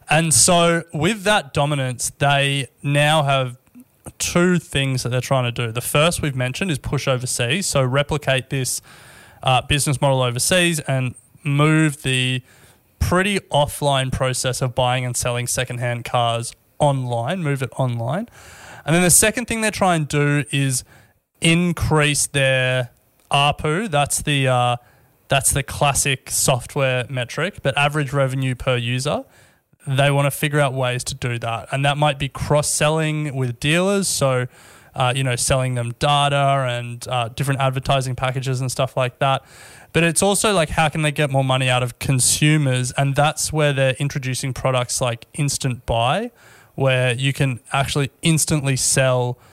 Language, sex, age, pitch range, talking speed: English, male, 20-39, 125-145 Hz, 160 wpm